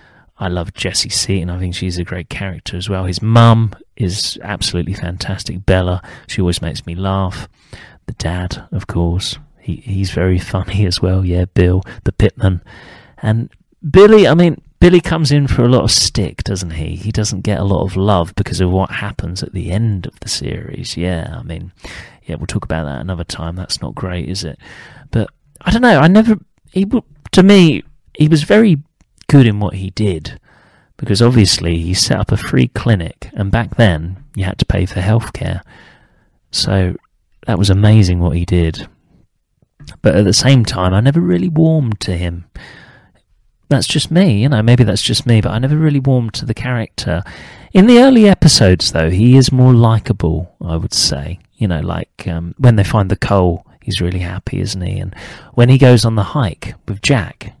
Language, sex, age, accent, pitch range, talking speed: English, male, 30-49, British, 90-120 Hz, 195 wpm